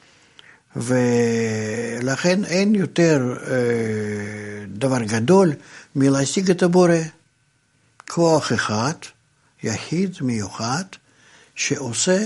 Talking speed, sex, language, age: 65 wpm, male, Hebrew, 60-79